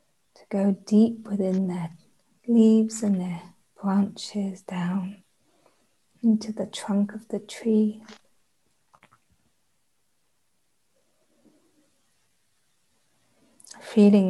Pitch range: 195-220 Hz